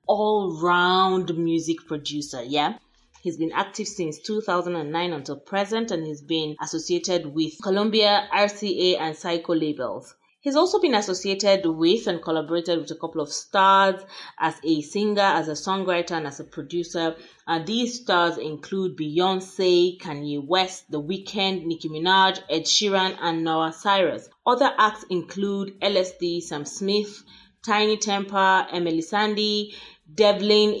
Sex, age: female, 30-49